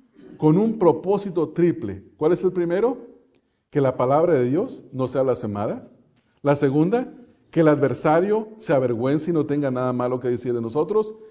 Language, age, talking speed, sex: English, 50-69, 175 wpm, male